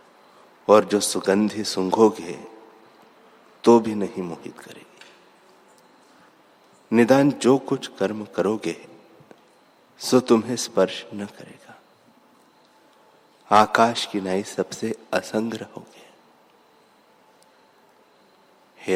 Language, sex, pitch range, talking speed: Hindi, male, 95-120 Hz, 80 wpm